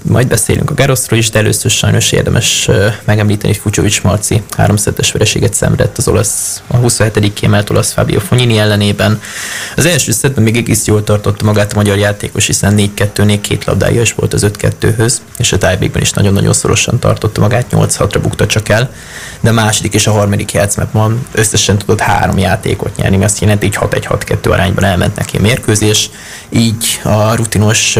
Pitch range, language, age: 100-115 Hz, Hungarian, 20-39